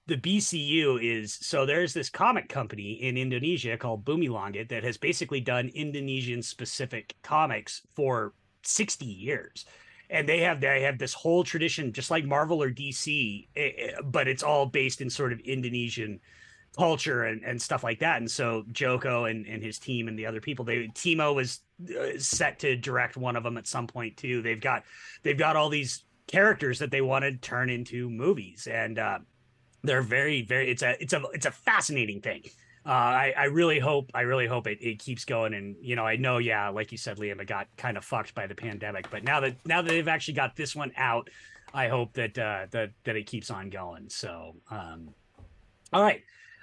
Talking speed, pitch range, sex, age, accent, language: 200 wpm, 115-150 Hz, male, 30-49, American, English